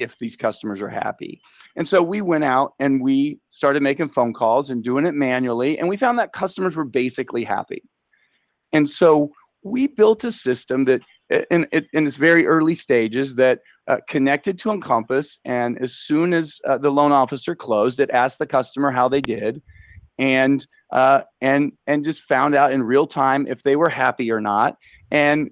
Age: 40-59